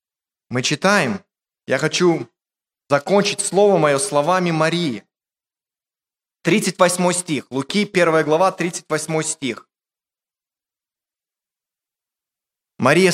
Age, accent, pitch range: 20-39, native, 155-200 Hz